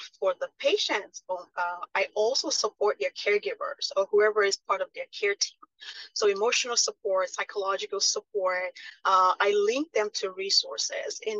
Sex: female